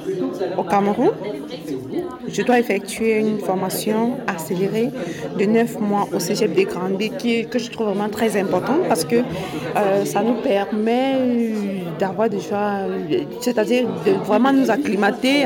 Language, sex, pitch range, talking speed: French, female, 200-240 Hz, 130 wpm